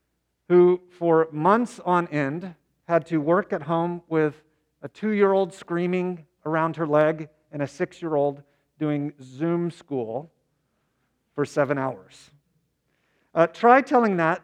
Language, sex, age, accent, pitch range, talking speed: English, male, 40-59, American, 140-170 Hz, 125 wpm